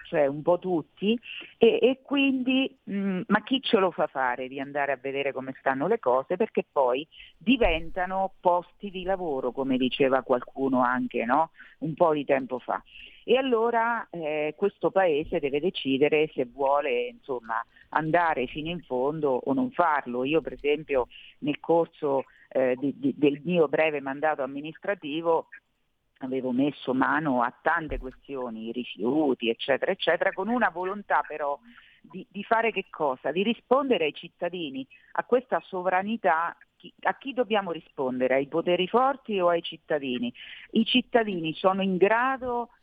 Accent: native